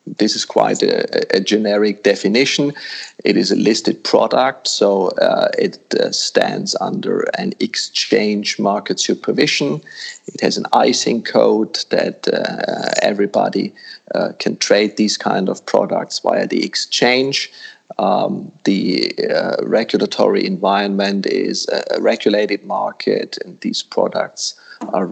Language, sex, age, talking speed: Danish, male, 40-59, 125 wpm